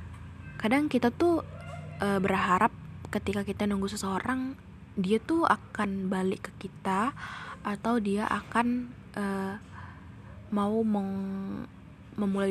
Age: 20-39